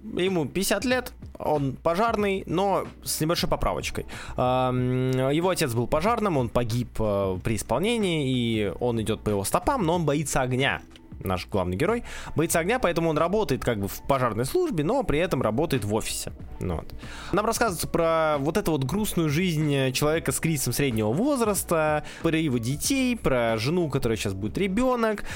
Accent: native